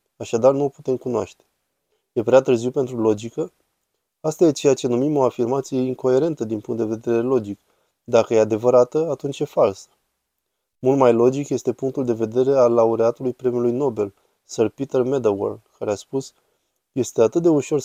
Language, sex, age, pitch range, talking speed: Romanian, male, 20-39, 115-135 Hz, 170 wpm